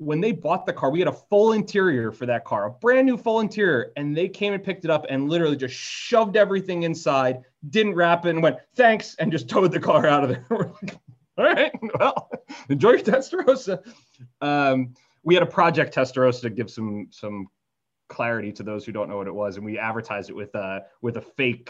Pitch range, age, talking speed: 120-165 Hz, 30-49, 225 wpm